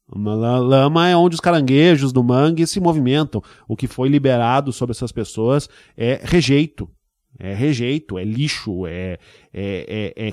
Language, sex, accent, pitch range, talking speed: Portuguese, male, Brazilian, 115-145 Hz, 150 wpm